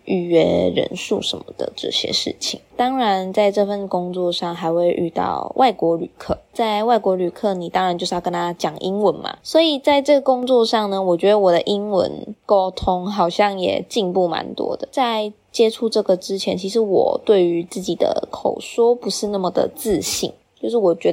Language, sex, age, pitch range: Chinese, female, 20-39, 180-235 Hz